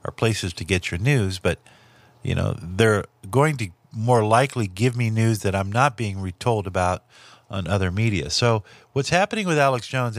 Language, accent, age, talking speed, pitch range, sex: English, American, 50-69, 185 wpm, 100-125 Hz, male